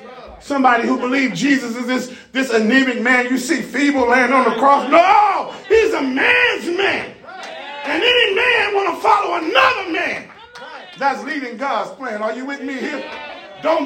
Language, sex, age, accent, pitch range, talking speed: English, male, 30-49, American, 225-310 Hz, 170 wpm